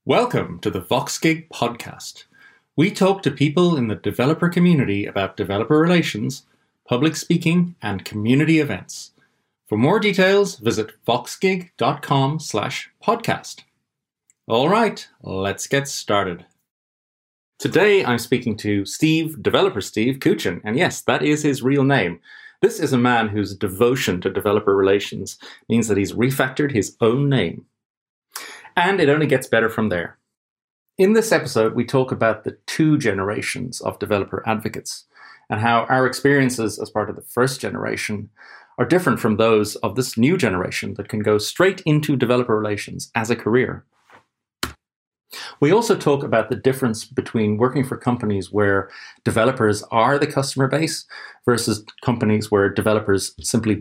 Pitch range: 105-145 Hz